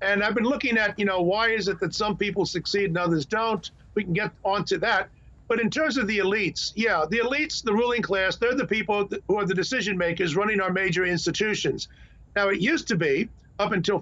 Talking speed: 225 wpm